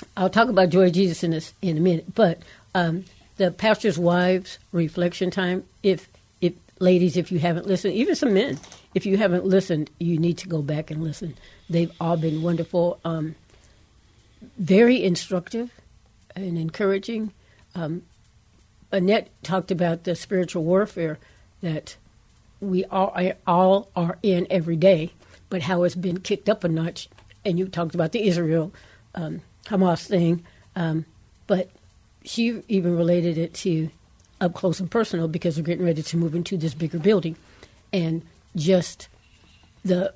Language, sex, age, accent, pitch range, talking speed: English, female, 60-79, American, 165-190 Hz, 165 wpm